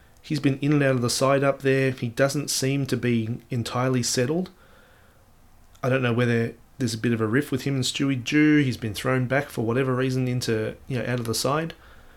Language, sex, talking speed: English, male, 225 wpm